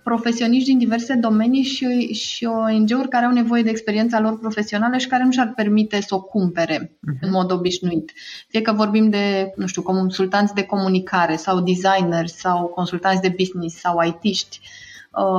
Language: Romanian